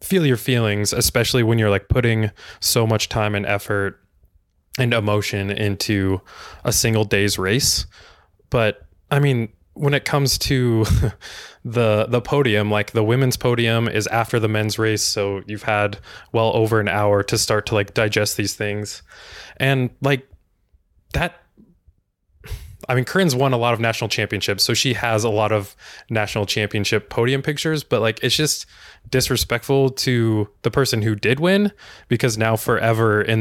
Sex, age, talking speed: male, 20-39, 160 wpm